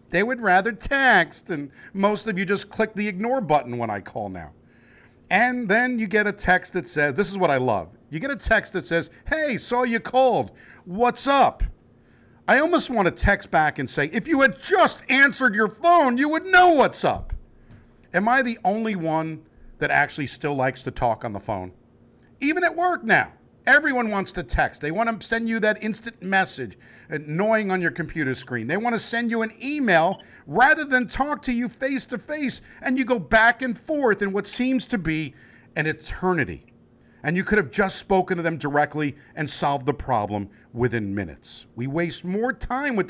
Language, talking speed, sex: English, 200 wpm, male